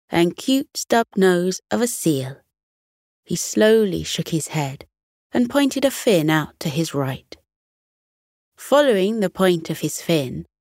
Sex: female